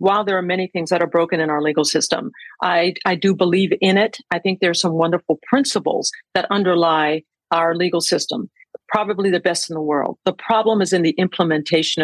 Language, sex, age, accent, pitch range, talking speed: English, female, 50-69, American, 170-205 Hz, 210 wpm